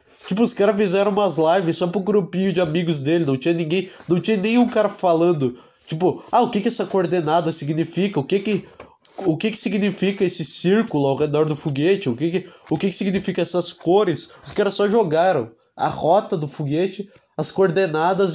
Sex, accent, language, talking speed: male, Brazilian, Portuguese, 195 wpm